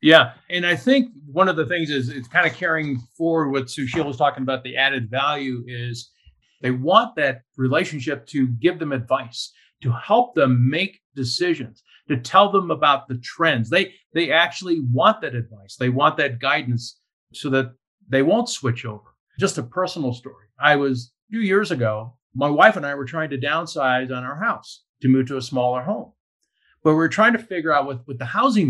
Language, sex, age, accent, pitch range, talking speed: English, male, 50-69, American, 130-190 Hz, 200 wpm